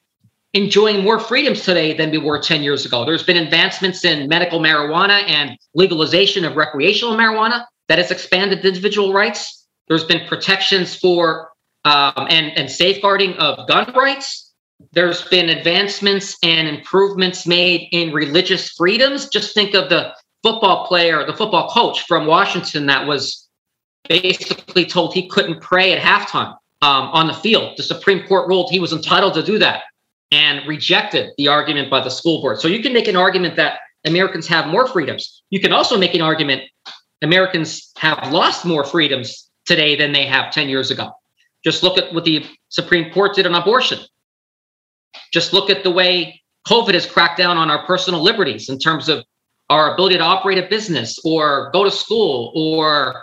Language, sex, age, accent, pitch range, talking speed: English, male, 40-59, American, 155-195 Hz, 175 wpm